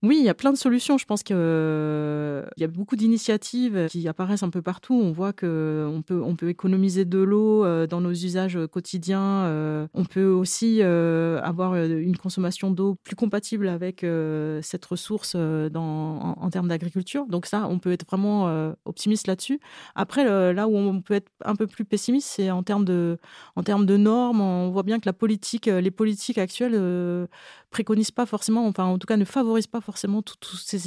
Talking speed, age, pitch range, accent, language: 190 wpm, 30-49, 170-210 Hz, French, French